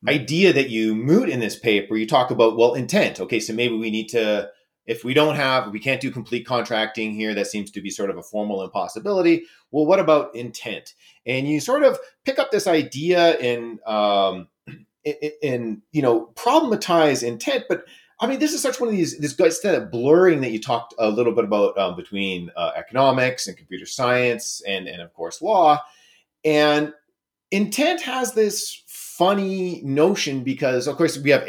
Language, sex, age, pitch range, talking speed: English, male, 30-49, 110-160 Hz, 190 wpm